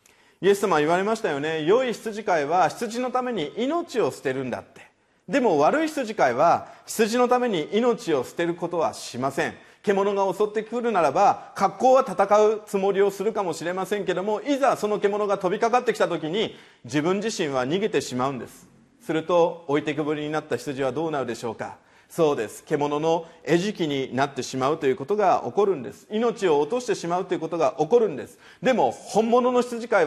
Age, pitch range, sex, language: 40-59, 155-240 Hz, male, Japanese